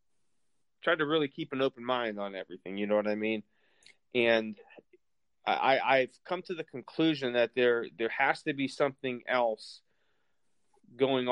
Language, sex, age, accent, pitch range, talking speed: English, male, 30-49, American, 115-135 Hz, 155 wpm